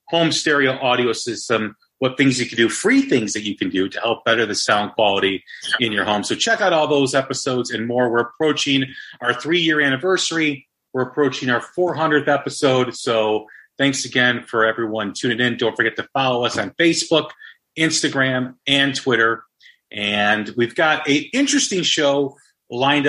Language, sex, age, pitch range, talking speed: English, male, 30-49, 110-145 Hz, 170 wpm